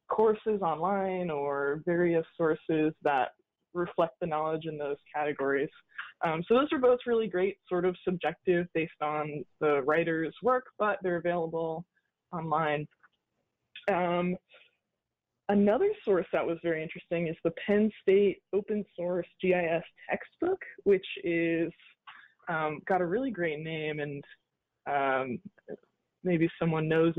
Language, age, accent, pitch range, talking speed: English, 20-39, American, 155-195 Hz, 130 wpm